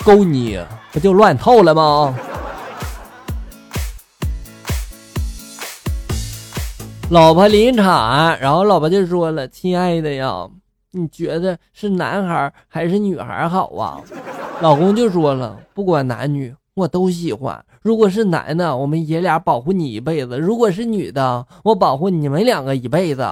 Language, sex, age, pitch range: Chinese, male, 20-39, 135-195 Hz